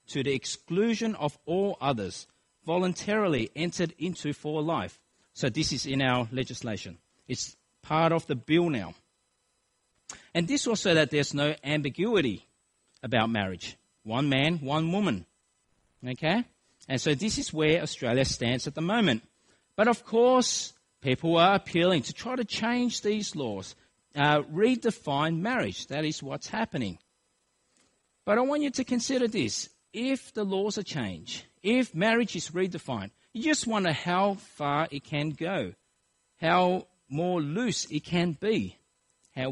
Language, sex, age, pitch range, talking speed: English, male, 40-59, 130-200 Hz, 145 wpm